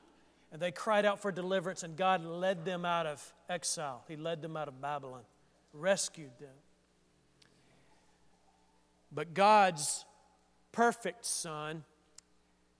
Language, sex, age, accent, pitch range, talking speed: English, male, 50-69, American, 155-220 Hz, 115 wpm